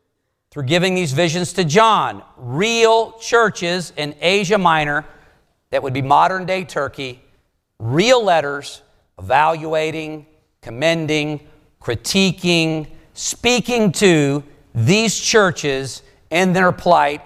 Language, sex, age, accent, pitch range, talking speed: English, male, 50-69, American, 125-170 Hz, 100 wpm